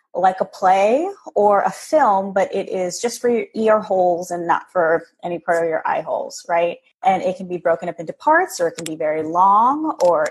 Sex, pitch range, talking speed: female, 175-220 Hz, 225 wpm